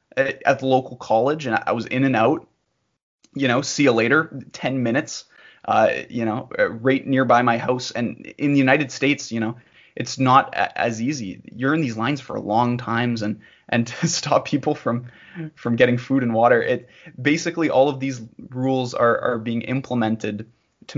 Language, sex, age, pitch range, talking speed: English, male, 20-39, 115-135 Hz, 190 wpm